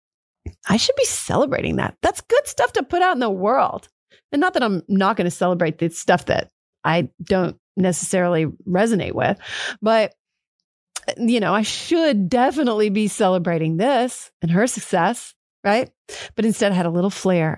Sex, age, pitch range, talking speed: female, 40-59, 175-225 Hz, 170 wpm